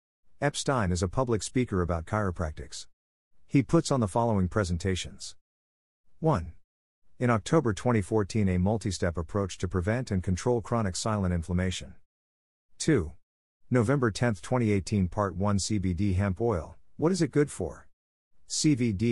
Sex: male